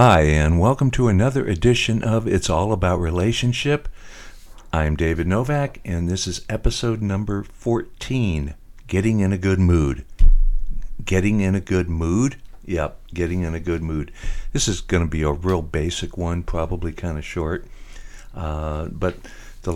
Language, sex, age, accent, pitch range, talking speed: English, male, 60-79, American, 85-100 Hz, 155 wpm